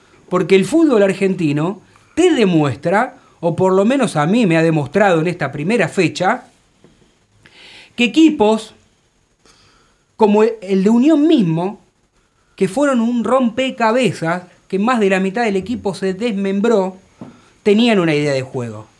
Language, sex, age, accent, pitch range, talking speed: Spanish, male, 30-49, Argentinian, 170-235 Hz, 140 wpm